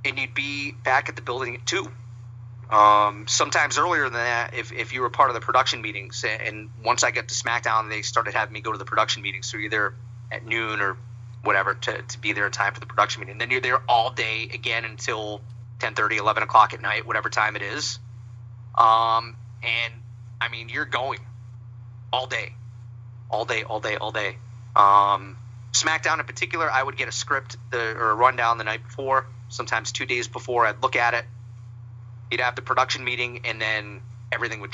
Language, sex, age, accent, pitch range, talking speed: English, male, 30-49, American, 115-120 Hz, 205 wpm